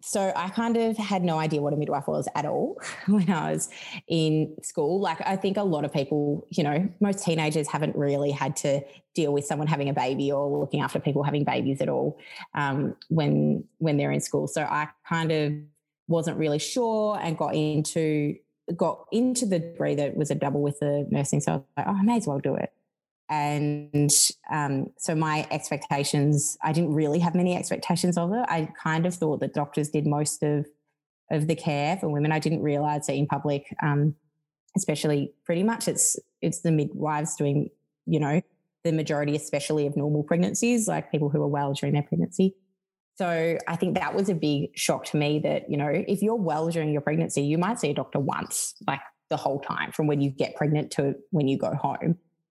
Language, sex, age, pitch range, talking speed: English, female, 20-39, 145-170 Hz, 210 wpm